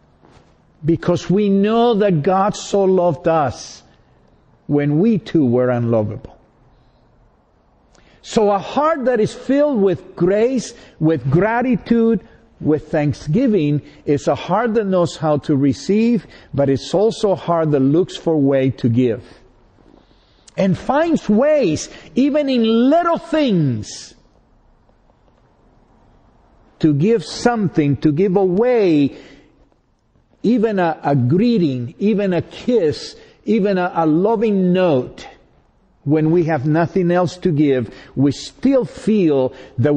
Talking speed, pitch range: 120 wpm, 135-200 Hz